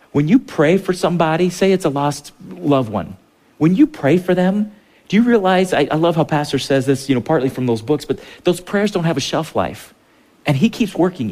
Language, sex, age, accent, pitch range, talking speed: English, male, 40-59, American, 115-165 Hz, 235 wpm